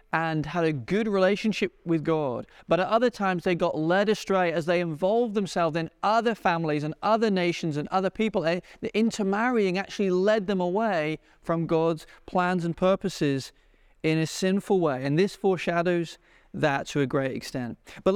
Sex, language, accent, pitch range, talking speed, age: male, English, British, 160-205 Hz, 170 wpm, 40-59